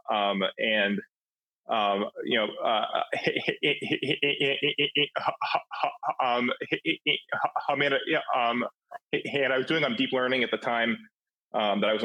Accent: American